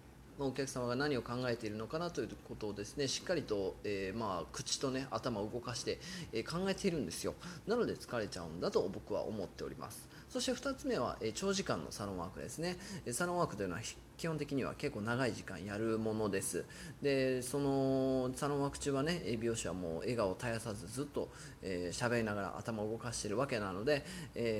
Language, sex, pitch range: Japanese, male, 110-145 Hz